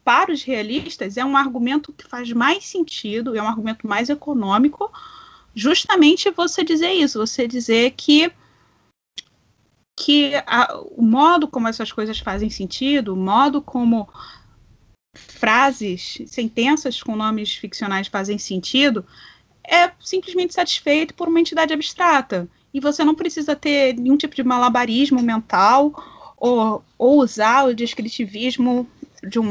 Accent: Brazilian